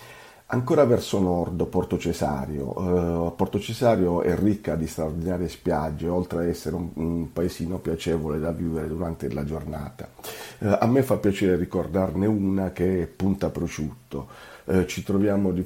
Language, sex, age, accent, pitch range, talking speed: Italian, male, 50-69, native, 80-95 Hz, 155 wpm